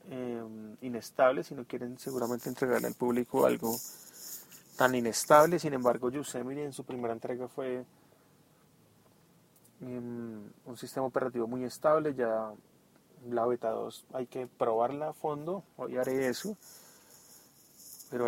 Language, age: Spanish, 30-49